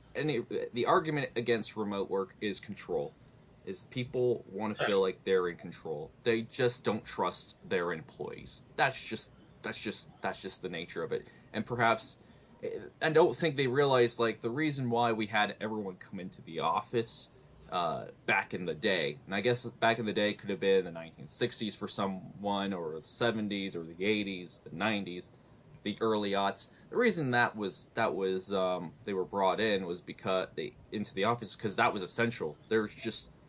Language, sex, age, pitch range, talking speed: English, male, 20-39, 95-115 Hz, 190 wpm